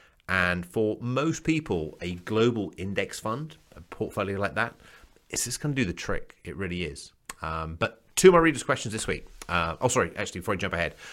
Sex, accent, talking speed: male, British, 205 wpm